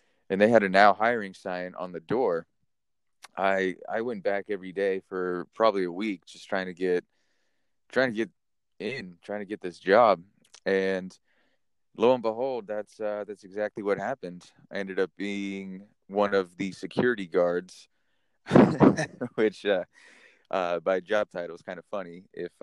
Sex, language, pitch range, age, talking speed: male, English, 90-105 Hz, 20-39, 165 wpm